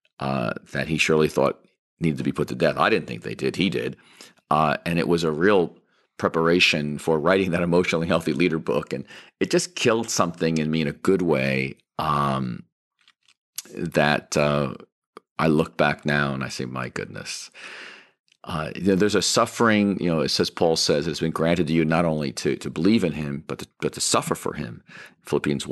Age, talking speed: 40-59, 205 wpm